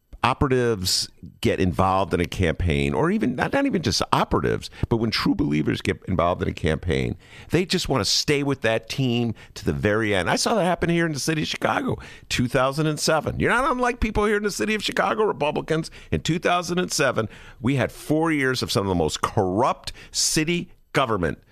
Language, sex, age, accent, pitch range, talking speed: English, male, 50-69, American, 95-150 Hz, 195 wpm